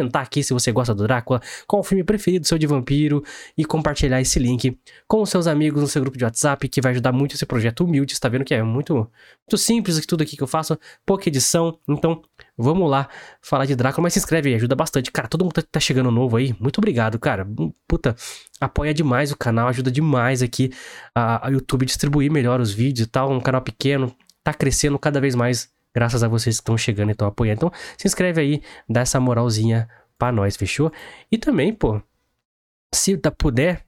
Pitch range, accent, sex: 125-150 Hz, Brazilian, male